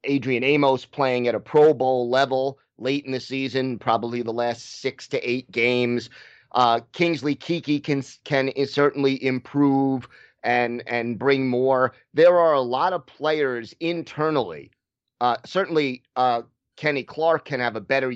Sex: male